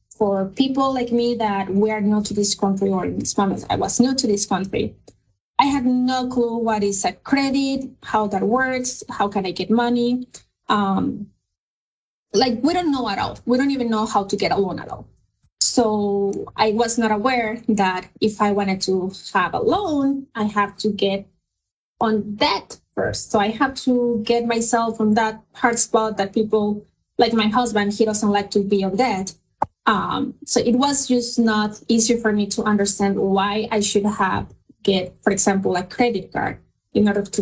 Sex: female